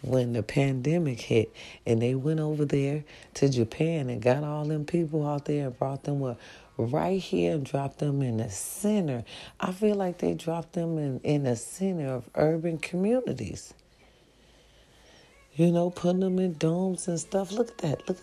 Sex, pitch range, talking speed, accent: female, 130-175 Hz, 180 wpm, American